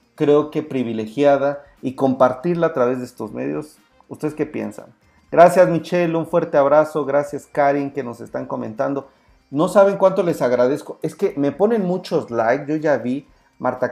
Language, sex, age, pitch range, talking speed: Spanish, male, 40-59, 125-160 Hz, 170 wpm